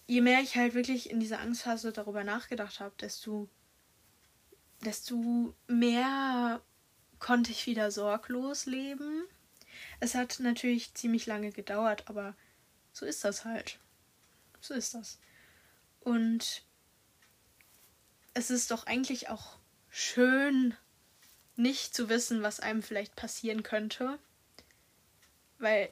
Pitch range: 220-250 Hz